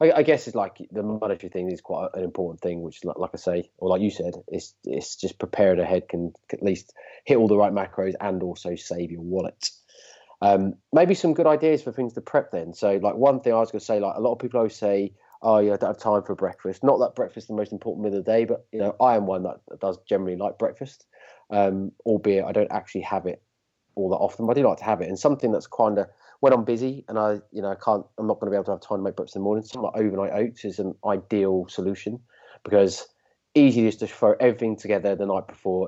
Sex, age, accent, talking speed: male, 30-49, British, 270 wpm